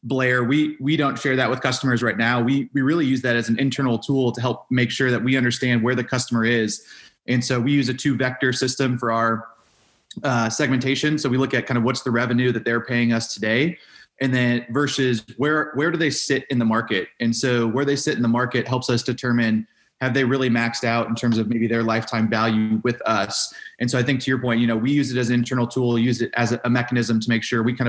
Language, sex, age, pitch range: English, male, 20-39, 115-135 Hz